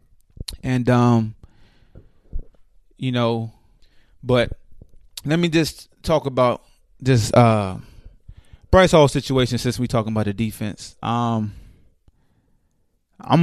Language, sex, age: English, male, 20-39